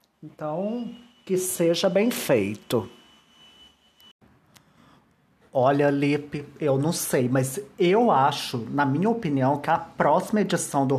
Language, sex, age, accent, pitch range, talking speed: Portuguese, male, 30-49, Brazilian, 150-205 Hz, 115 wpm